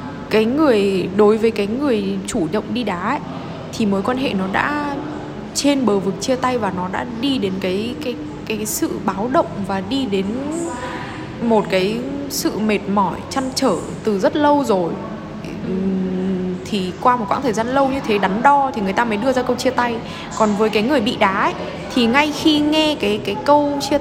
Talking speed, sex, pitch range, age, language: 205 wpm, female, 195-250 Hz, 20-39, Vietnamese